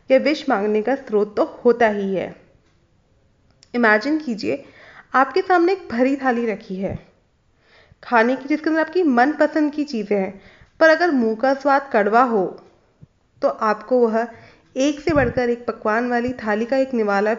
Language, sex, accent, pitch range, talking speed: Hindi, female, native, 220-300 Hz, 160 wpm